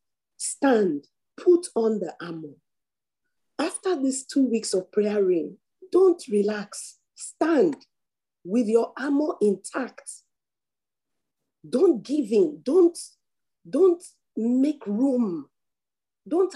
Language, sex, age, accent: English, female, 40-59, Nigerian